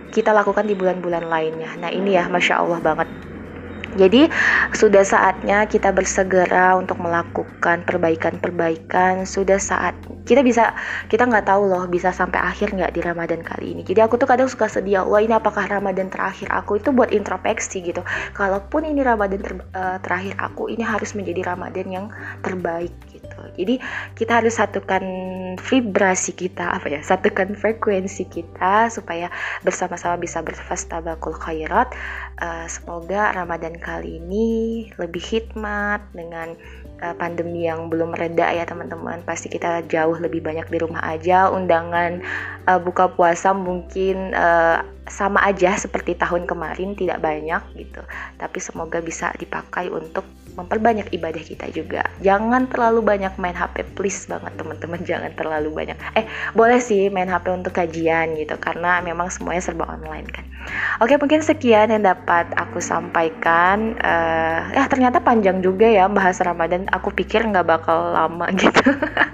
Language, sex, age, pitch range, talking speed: Indonesian, female, 20-39, 170-210 Hz, 150 wpm